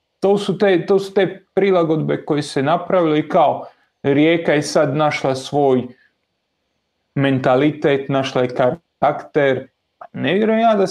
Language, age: Croatian, 30-49